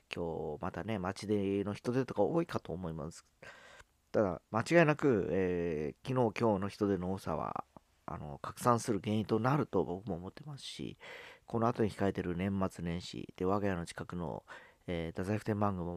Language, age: Japanese, 40-59